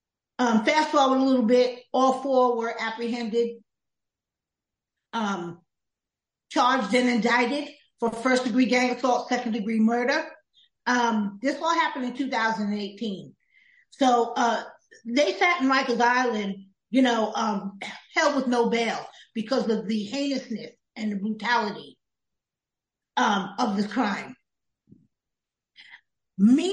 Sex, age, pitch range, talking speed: female, 40-59, 215-265 Hz, 115 wpm